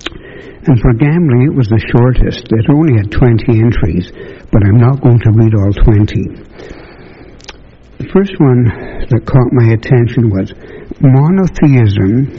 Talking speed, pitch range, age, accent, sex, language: 140 wpm, 110-140 Hz, 60-79, American, male, English